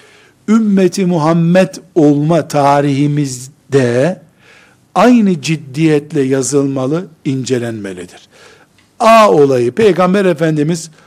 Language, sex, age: Turkish, male, 60-79